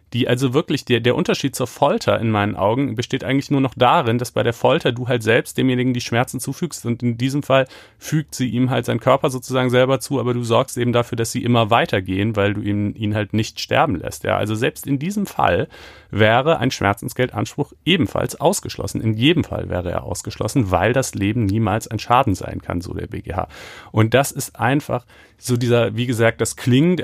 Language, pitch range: German, 105-130 Hz